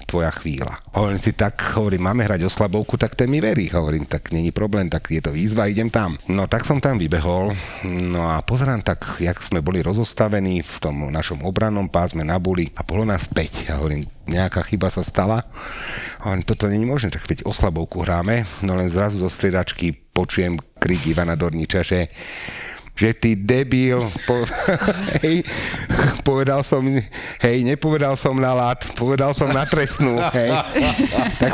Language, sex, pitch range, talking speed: Slovak, male, 90-125 Hz, 160 wpm